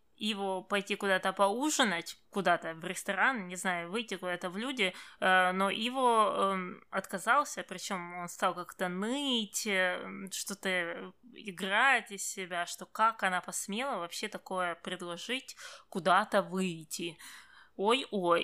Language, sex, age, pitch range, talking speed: Russian, female, 20-39, 190-255 Hz, 120 wpm